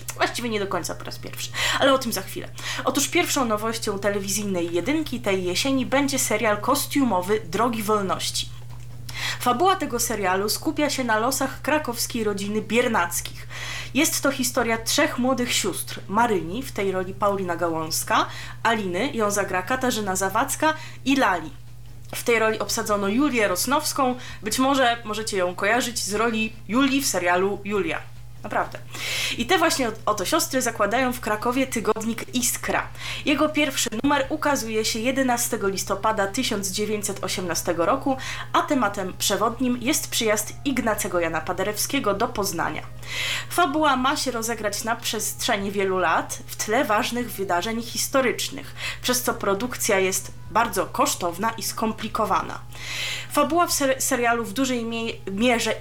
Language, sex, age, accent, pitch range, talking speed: Polish, female, 20-39, native, 190-255 Hz, 135 wpm